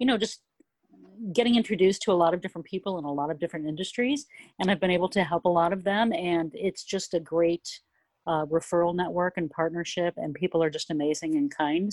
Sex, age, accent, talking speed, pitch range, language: female, 40-59, American, 220 wpm, 150-190 Hz, English